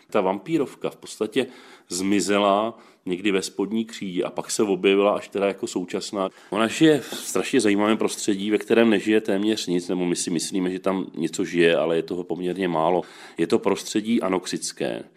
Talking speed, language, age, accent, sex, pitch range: 180 wpm, Czech, 40-59, native, male, 95-110 Hz